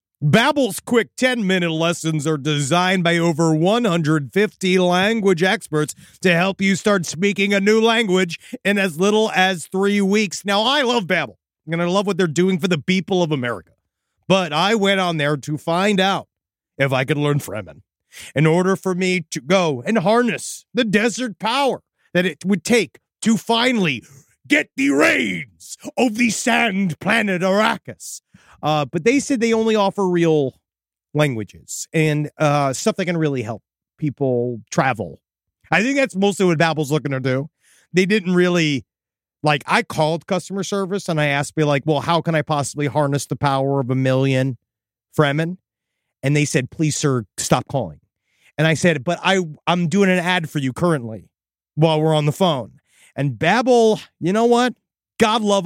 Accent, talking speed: American, 175 wpm